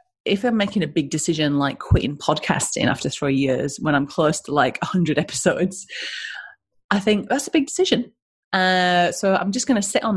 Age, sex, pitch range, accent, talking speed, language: 30-49, female, 155-230 Hz, British, 195 wpm, English